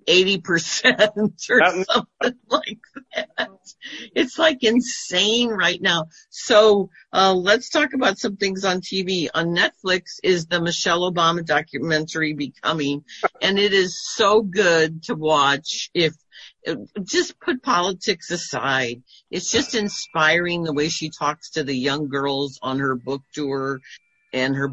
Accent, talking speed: American, 135 wpm